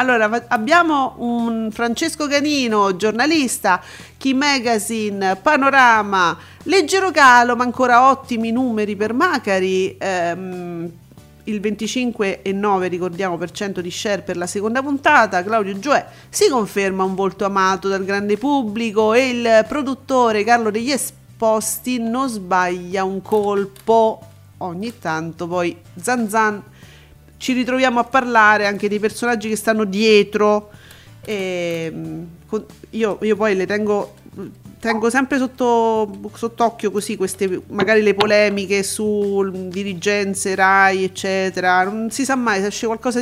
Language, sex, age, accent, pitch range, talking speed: Italian, female, 40-59, native, 190-240 Hz, 130 wpm